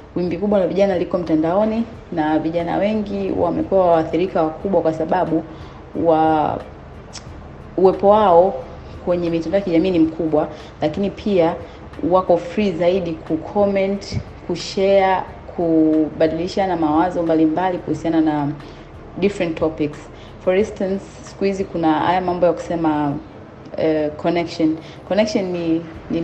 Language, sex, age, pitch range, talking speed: Swahili, female, 30-49, 155-180 Hz, 115 wpm